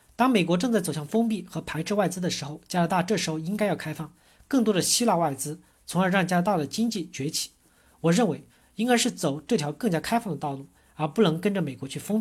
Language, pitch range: Chinese, 155-215 Hz